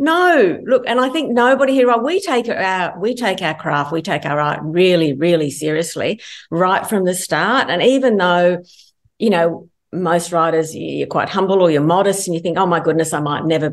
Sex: female